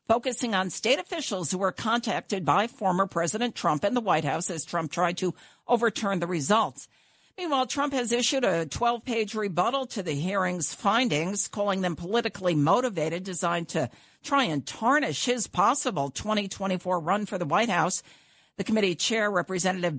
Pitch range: 165-220 Hz